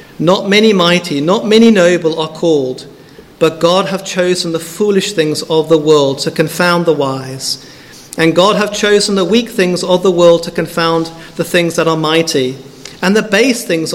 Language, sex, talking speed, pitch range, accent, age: English, male, 185 wpm, 165-230 Hz, British, 50-69